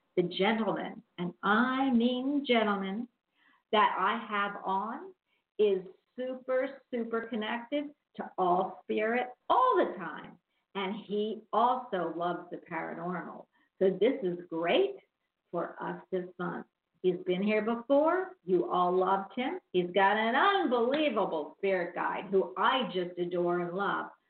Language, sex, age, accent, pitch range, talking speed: English, female, 50-69, American, 185-250 Hz, 135 wpm